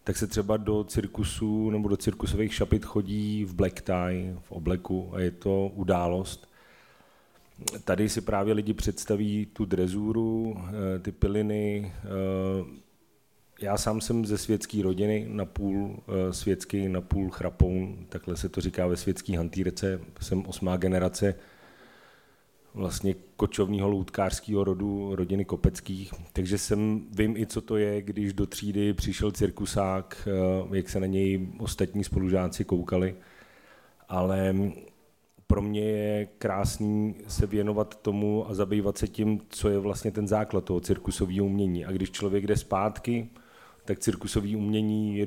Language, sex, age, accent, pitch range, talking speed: Czech, male, 40-59, native, 95-105 Hz, 140 wpm